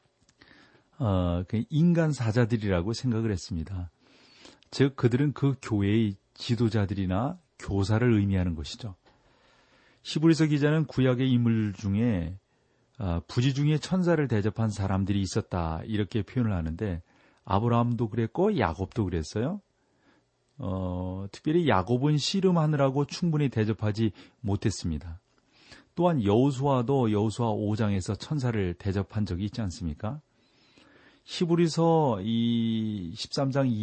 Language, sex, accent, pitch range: Korean, male, native, 95-130 Hz